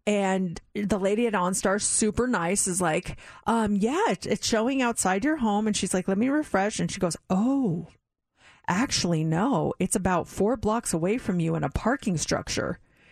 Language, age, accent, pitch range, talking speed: English, 30-49, American, 185-230 Hz, 180 wpm